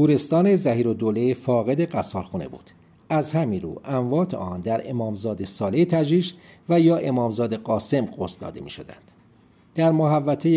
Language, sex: Persian, male